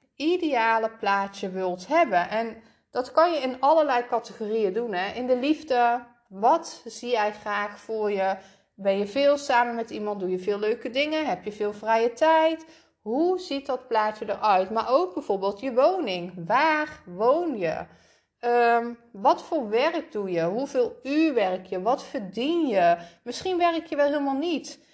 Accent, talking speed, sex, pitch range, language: Dutch, 170 wpm, female, 205-280 Hz, Dutch